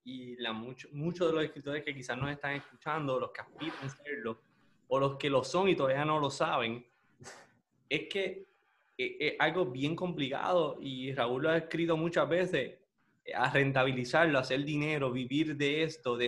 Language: Spanish